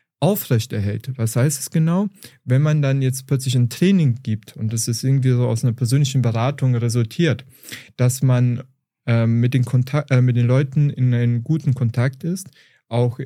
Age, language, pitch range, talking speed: 30-49, German, 120-140 Hz, 175 wpm